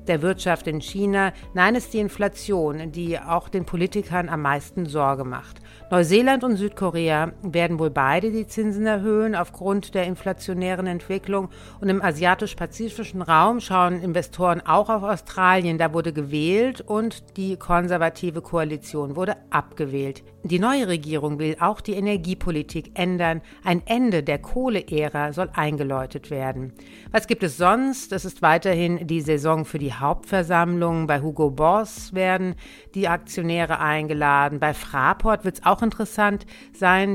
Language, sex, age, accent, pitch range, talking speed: German, female, 60-79, German, 155-190 Hz, 145 wpm